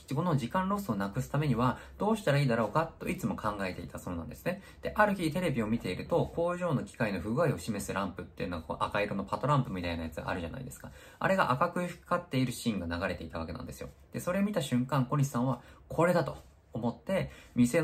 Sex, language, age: male, Japanese, 20-39